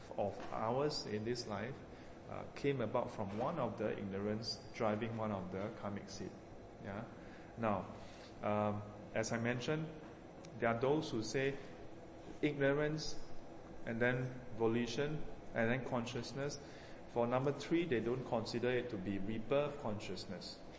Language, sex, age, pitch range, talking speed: English, male, 20-39, 105-130 Hz, 140 wpm